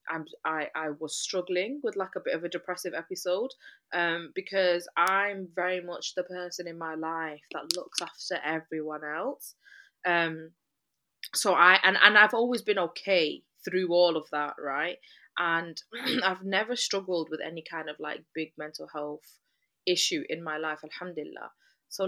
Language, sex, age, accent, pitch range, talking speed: English, female, 20-39, British, 160-195 Hz, 165 wpm